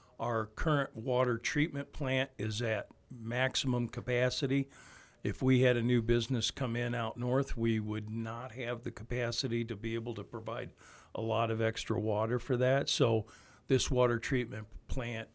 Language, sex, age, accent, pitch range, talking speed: English, male, 50-69, American, 110-130 Hz, 165 wpm